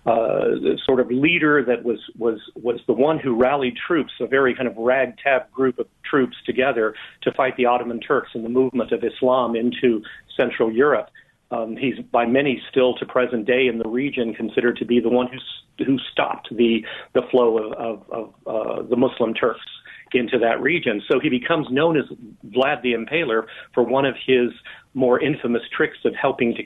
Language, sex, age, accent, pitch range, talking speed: English, male, 40-59, American, 120-135 Hz, 195 wpm